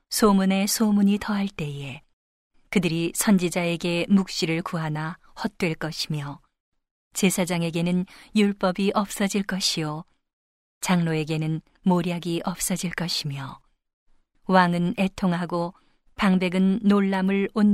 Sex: female